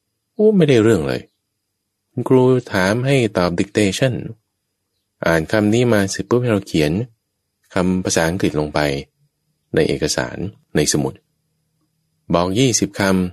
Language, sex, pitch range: English, male, 90-135 Hz